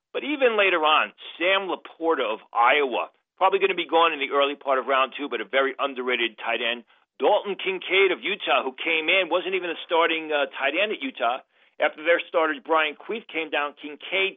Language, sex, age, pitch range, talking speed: English, male, 50-69, 145-220 Hz, 210 wpm